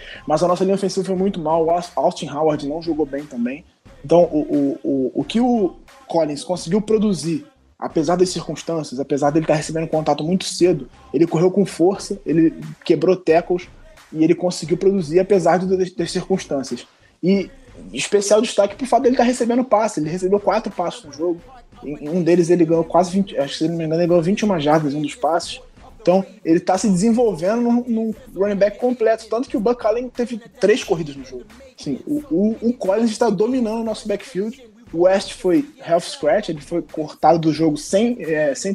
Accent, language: Brazilian, Portuguese